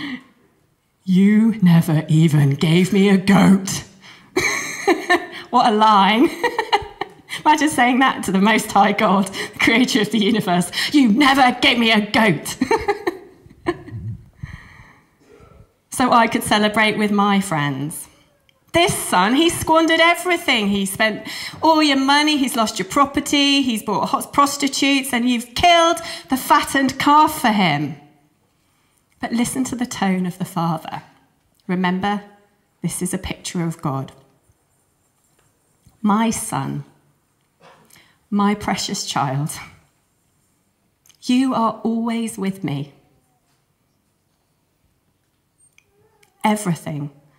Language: English